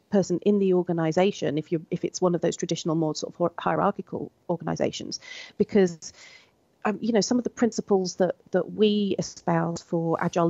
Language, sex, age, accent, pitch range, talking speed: English, female, 40-59, British, 170-205 Hz, 175 wpm